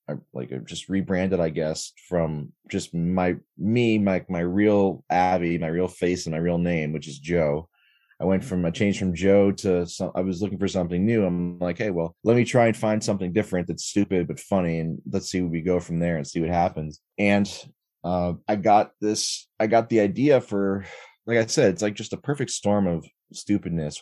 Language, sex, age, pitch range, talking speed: English, male, 20-39, 90-110 Hz, 220 wpm